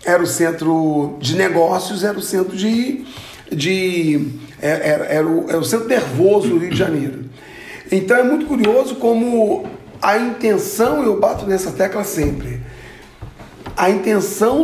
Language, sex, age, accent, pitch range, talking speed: Portuguese, male, 40-59, Brazilian, 170-245 Hz, 145 wpm